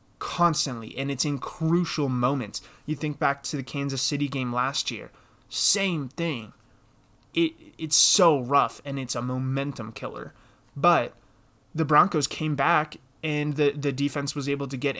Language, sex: English, male